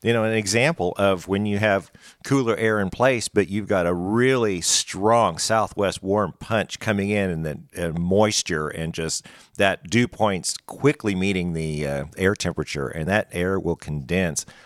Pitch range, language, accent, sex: 90-125 Hz, English, American, male